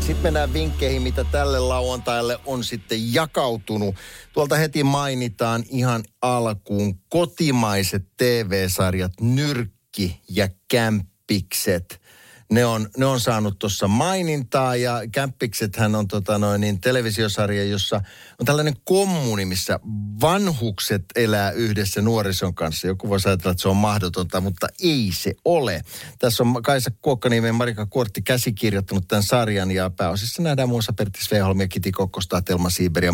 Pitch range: 95-125 Hz